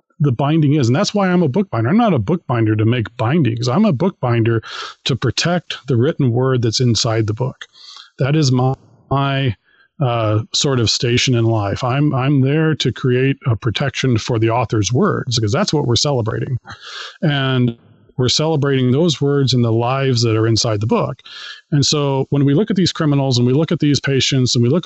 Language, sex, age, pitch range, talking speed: English, male, 40-59, 120-155 Hz, 205 wpm